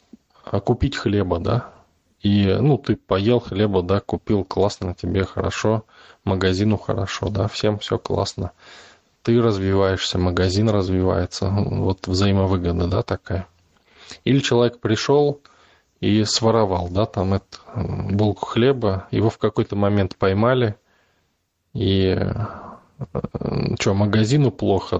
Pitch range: 95-115 Hz